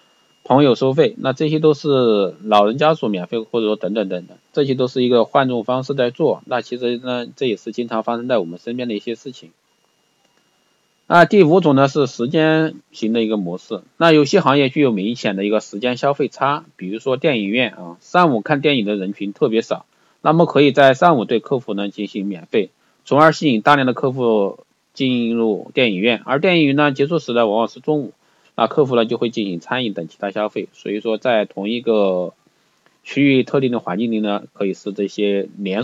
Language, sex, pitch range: Chinese, male, 110-140 Hz